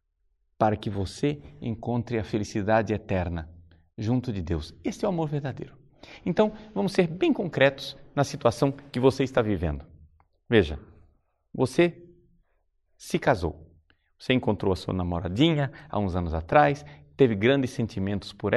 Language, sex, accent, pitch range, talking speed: Portuguese, male, Brazilian, 110-160 Hz, 140 wpm